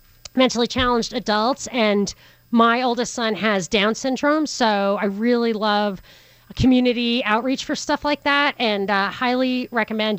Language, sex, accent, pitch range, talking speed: English, female, American, 210-260 Hz, 140 wpm